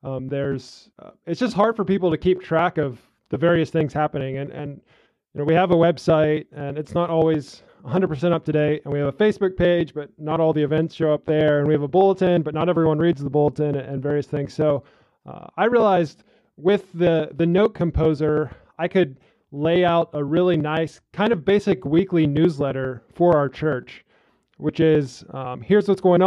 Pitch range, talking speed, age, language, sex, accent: 150-175 Hz, 205 wpm, 20-39, English, male, American